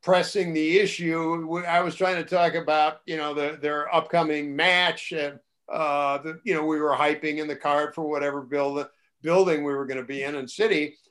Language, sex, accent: English, male, American